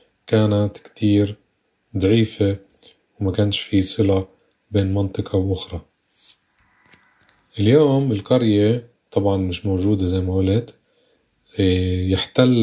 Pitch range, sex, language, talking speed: 100-115 Hz, male, Arabic, 90 wpm